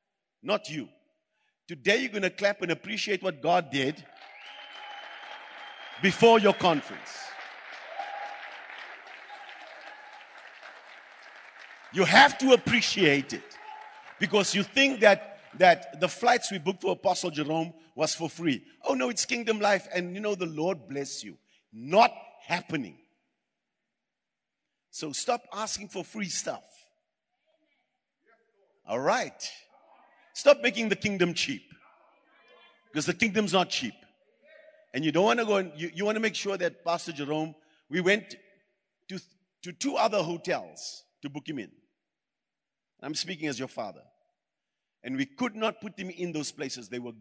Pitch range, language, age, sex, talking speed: 165-220 Hz, English, 50-69, male, 140 wpm